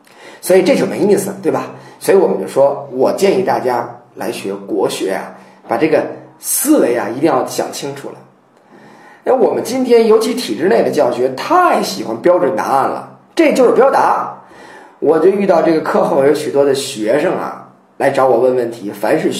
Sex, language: male, Chinese